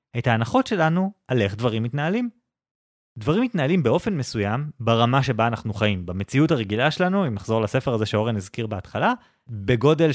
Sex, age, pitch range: male, 20-39, 115-160 Hz